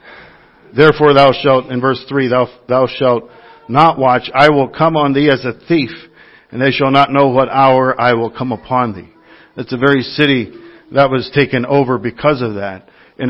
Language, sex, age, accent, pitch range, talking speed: English, male, 50-69, American, 125-150 Hz, 195 wpm